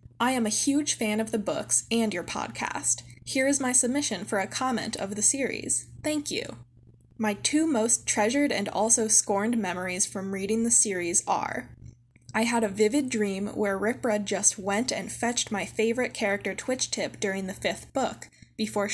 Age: 10-29